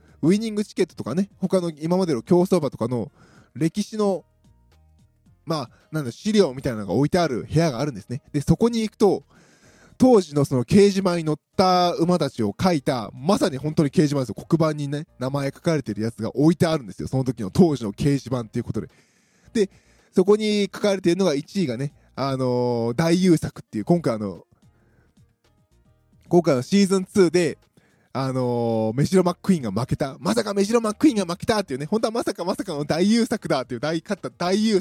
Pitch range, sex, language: 125-185 Hz, male, Japanese